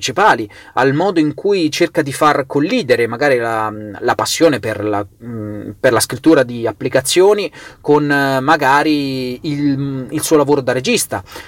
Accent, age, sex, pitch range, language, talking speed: native, 30-49, male, 120-165 Hz, Italian, 135 wpm